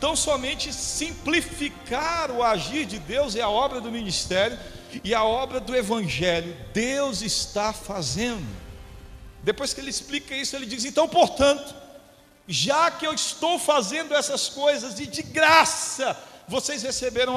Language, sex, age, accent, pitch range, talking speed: Portuguese, male, 50-69, Brazilian, 200-275 Hz, 140 wpm